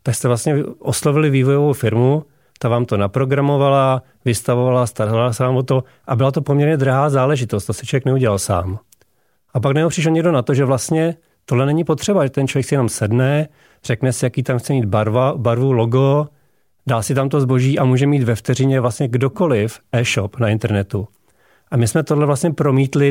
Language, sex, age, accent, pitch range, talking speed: Czech, male, 40-59, native, 115-140 Hz, 190 wpm